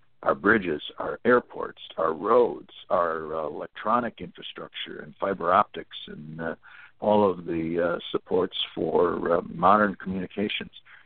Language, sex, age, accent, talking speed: English, male, 60-79, American, 130 wpm